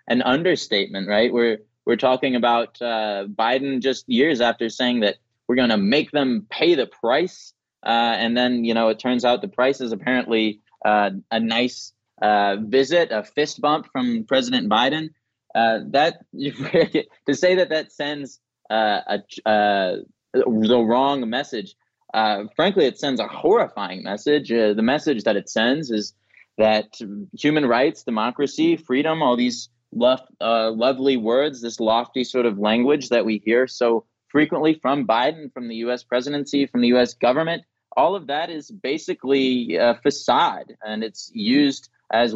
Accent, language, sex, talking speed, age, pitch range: American, English, male, 160 wpm, 20-39, 110-140 Hz